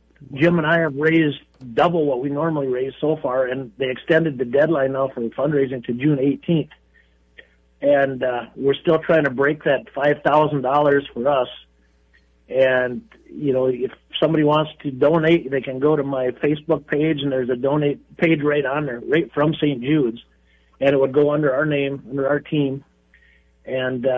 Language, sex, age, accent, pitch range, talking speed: English, male, 50-69, American, 125-150 Hz, 180 wpm